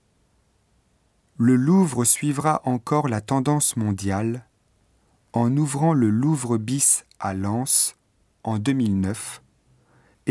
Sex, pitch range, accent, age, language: male, 105-135 Hz, French, 40-59, Japanese